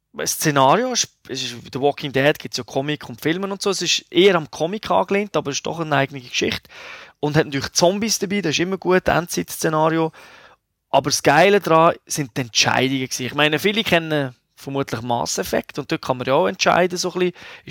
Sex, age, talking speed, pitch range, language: male, 20-39, 220 wpm, 140-180 Hz, German